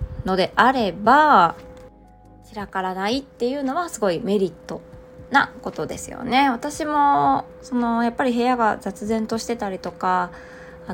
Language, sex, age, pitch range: Japanese, female, 20-39, 180-255 Hz